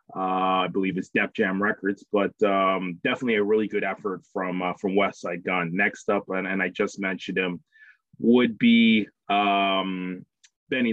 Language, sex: English, male